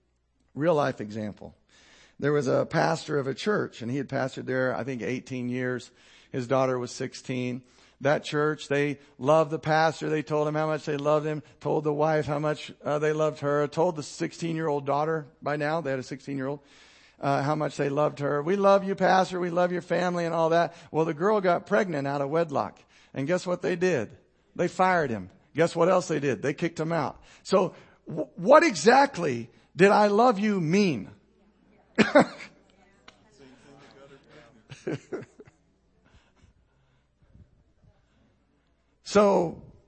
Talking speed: 160 wpm